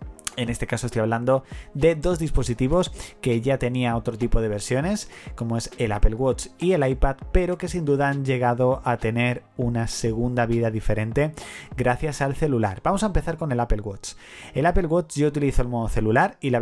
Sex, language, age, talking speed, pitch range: male, Spanish, 30-49, 200 wpm, 115-140 Hz